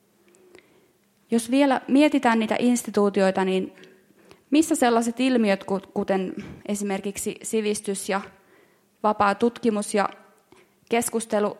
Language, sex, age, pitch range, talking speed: Finnish, female, 20-39, 200-245 Hz, 90 wpm